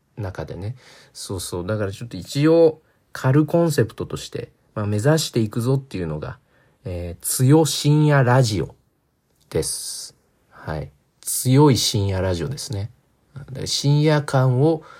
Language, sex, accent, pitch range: Japanese, male, native, 100-140 Hz